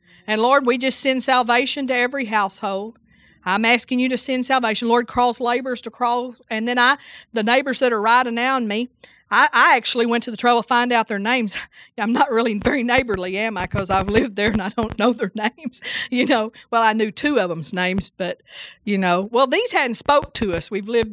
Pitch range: 215-270 Hz